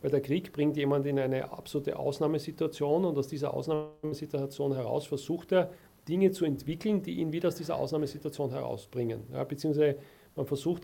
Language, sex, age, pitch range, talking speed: German, male, 40-59, 140-170 Hz, 165 wpm